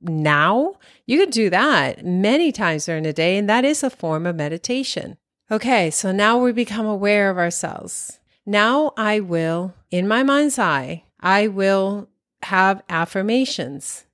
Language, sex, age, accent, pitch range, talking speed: English, female, 40-59, American, 160-195 Hz, 155 wpm